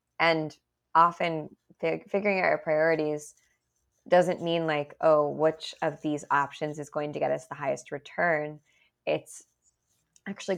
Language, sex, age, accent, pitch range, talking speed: English, female, 20-39, American, 145-165 Hz, 140 wpm